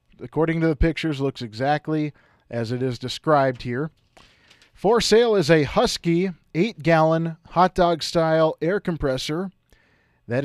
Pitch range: 125-175 Hz